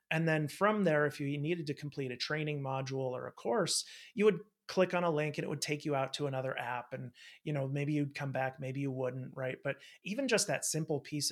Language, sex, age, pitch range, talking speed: English, male, 30-49, 130-160 Hz, 250 wpm